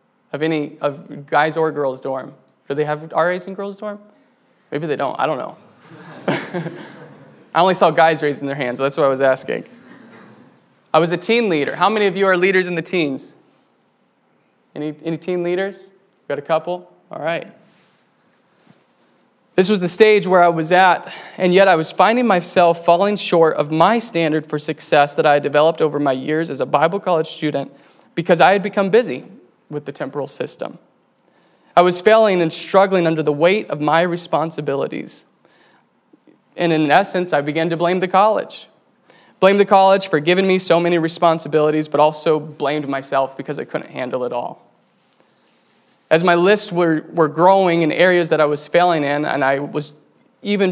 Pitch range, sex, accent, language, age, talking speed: 150-185 Hz, male, American, English, 20-39, 180 wpm